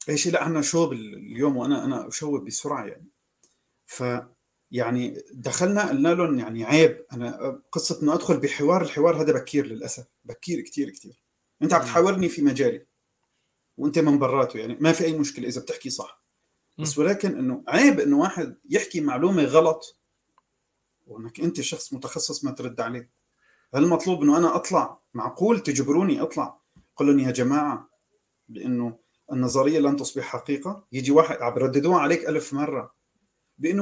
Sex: male